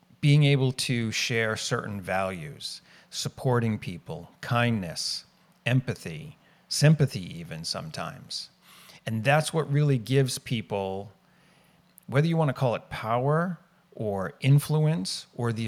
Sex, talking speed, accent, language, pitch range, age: male, 115 wpm, American, English, 105-145 Hz, 40-59